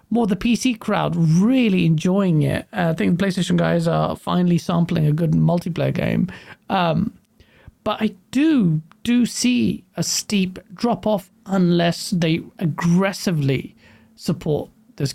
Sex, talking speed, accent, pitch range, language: male, 140 wpm, British, 170-220 Hz, English